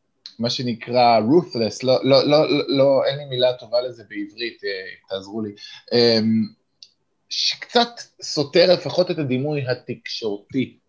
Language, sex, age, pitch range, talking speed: Hebrew, male, 20-39, 110-140 Hz, 120 wpm